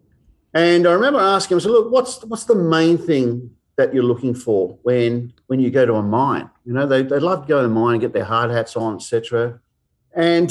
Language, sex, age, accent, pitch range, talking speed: English, male, 50-69, Australian, 120-170 Hz, 240 wpm